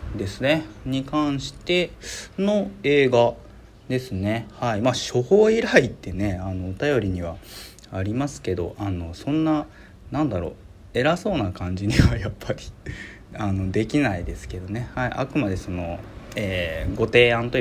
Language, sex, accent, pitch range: Japanese, male, native, 100-130 Hz